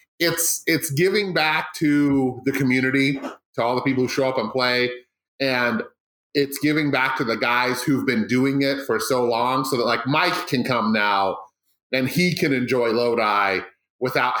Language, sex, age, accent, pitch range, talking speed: English, male, 30-49, American, 125-170 Hz, 180 wpm